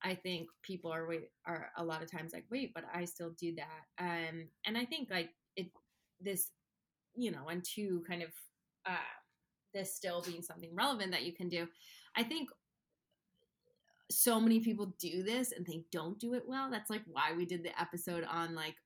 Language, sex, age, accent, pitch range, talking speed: English, female, 20-39, American, 165-200 Hz, 195 wpm